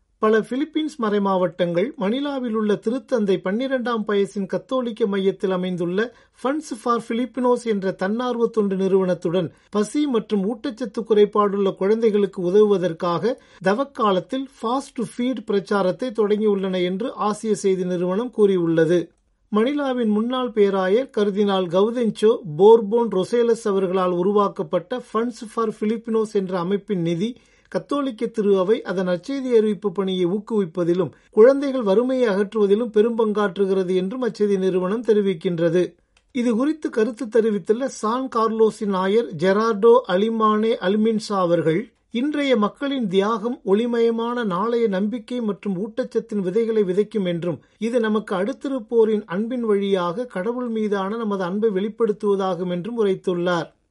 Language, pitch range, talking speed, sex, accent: Tamil, 190-235 Hz, 110 wpm, male, native